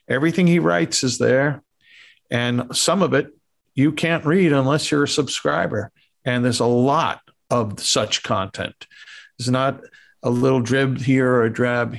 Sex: male